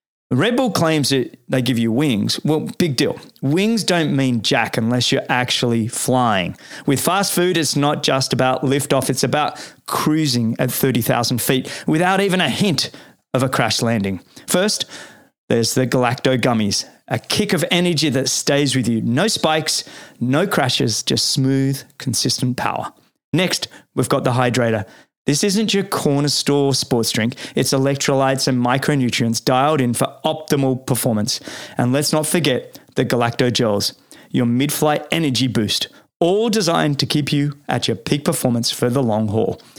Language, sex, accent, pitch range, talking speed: English, male, Australian, 120-155 Hz, 160 wpm